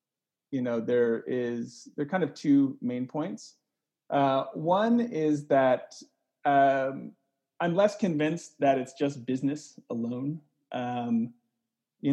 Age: 30-49